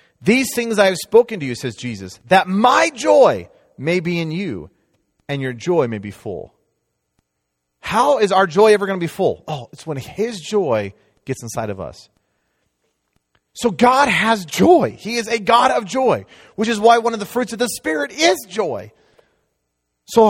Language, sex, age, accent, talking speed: English, male, 30-49, American, 185 wpm